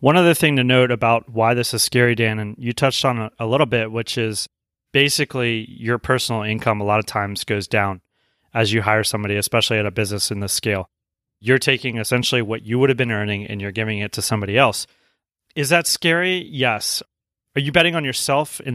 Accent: American